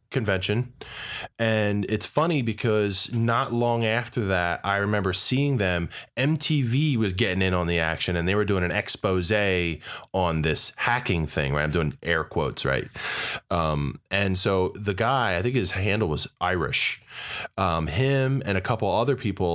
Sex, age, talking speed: male, 20-39, 165 wpm